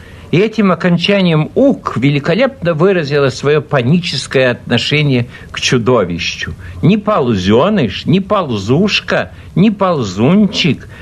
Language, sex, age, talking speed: Russian, male, 60-79, 95 wpm